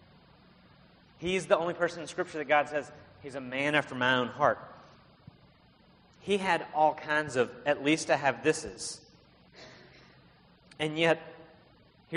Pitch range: 130-160 Hz